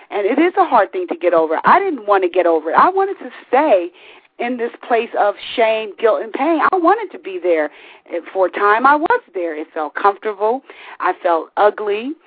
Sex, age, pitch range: female, 40-59, 165-240 Hz